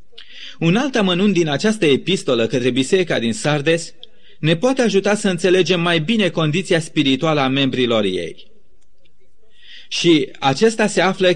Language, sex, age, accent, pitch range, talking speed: Romanian, male, 30-49, native, 155-205 Hz, 130 wpm